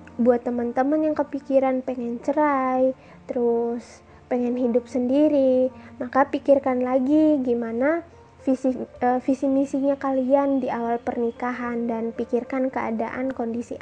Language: Indonesian